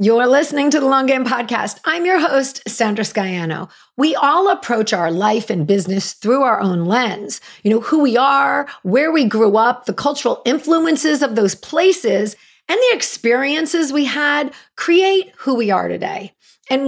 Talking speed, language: 175 wpm, English